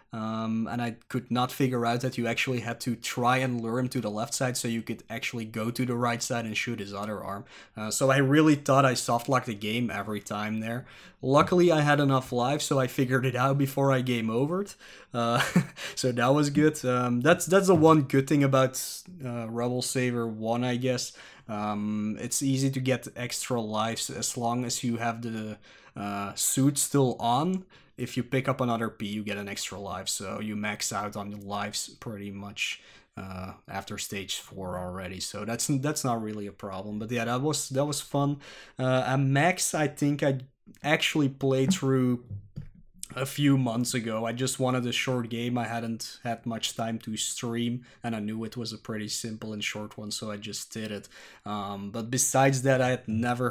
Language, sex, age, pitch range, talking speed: English, male, 20-39, 110-135 Hz, 205 wpm